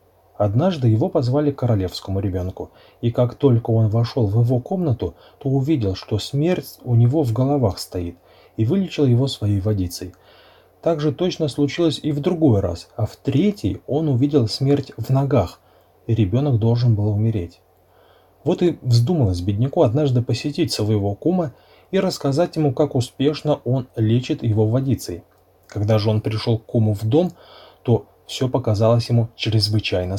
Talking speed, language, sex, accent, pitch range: 155 wpm, Russian, male, native, 100-145 Hz